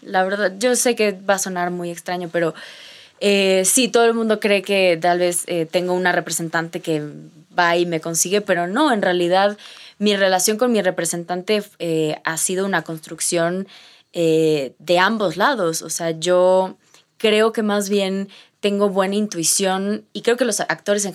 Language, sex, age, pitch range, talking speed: Spanish, female, 20-39, 165-200 Hz, 180 wpm